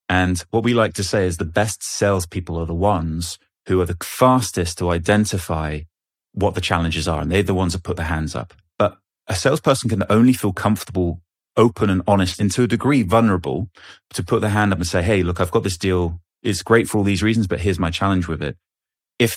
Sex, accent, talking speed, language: male, British, 225 wpm, English